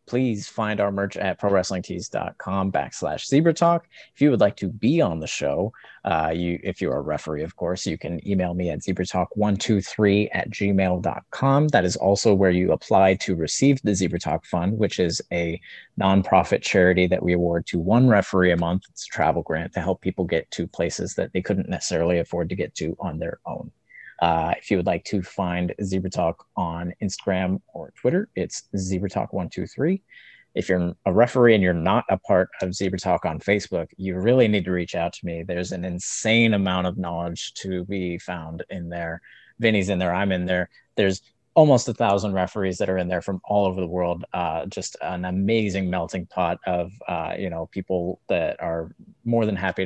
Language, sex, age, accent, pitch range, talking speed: English, male, 30-49, American, 90-100 Hz, 200 wpm